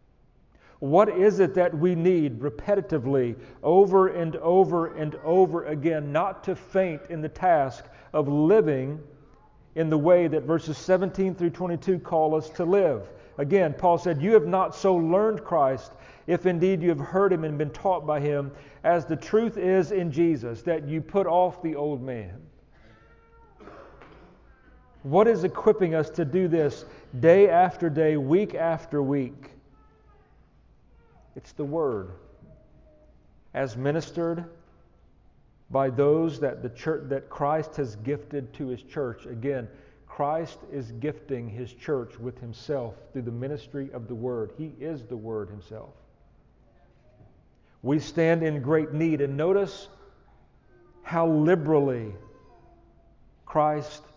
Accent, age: American, 40-59